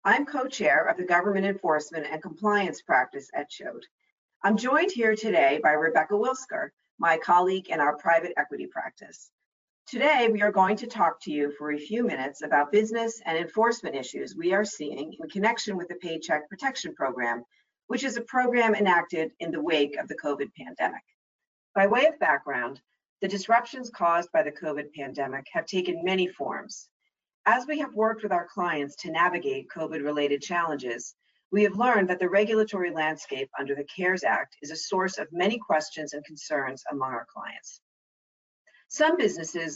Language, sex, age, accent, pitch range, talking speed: English, female, 50-69, American, 150-220 Hz, 170 wpm